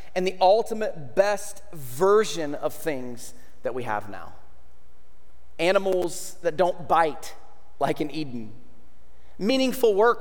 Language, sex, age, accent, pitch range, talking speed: English, male, 30-49, American, 145-215 Hz, 120 wpm